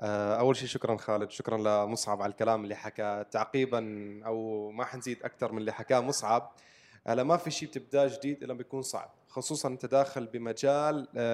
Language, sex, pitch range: Arabic, male, 120-150 Hz